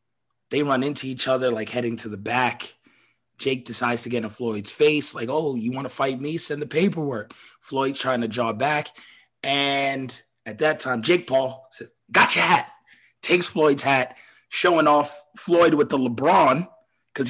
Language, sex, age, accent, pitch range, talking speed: English, male, 30-49, American, 130-195 Hz, 180 wpm